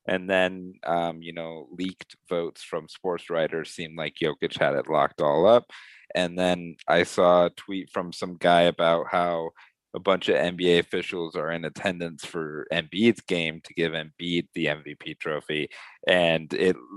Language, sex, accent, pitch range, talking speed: English, male, American, 80-90 Hz, 175 wpm